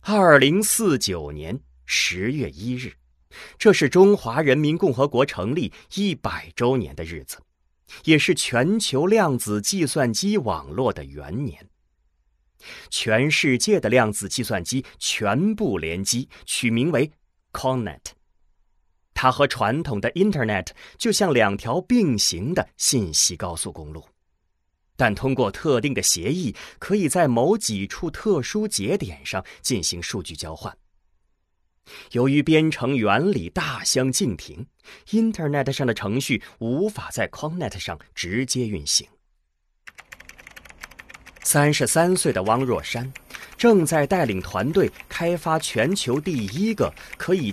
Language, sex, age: Chinese, male, 30-49